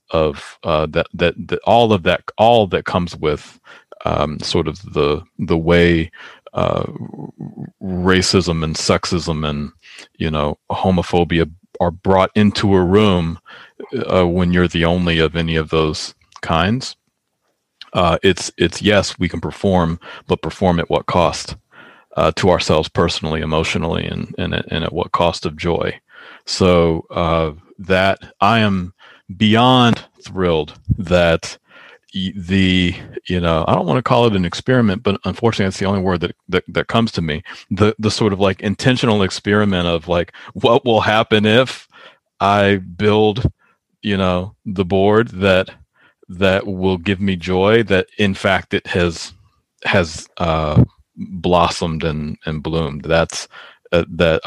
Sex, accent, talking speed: male, American, 150 wpm